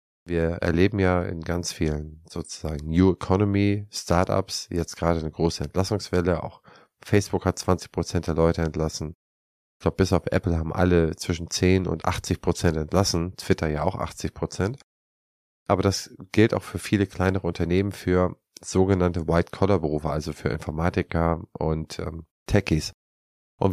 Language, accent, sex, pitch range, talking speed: German, German, male, 80-95 Hz, 140 wpm